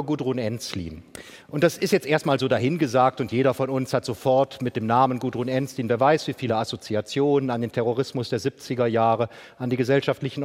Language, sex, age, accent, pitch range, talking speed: German, male, 40-59, German, 125-160 Hz, 195 wpm